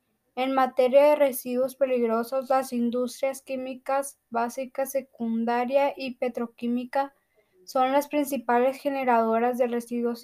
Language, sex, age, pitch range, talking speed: Spanish, female, 10-29, 240-275 Hz, 105 wpm